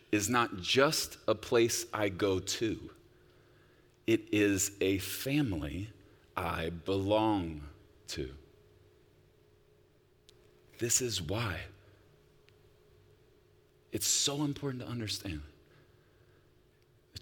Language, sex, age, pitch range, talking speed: English, male, 30-49, 95-145 Hz, 85 wpm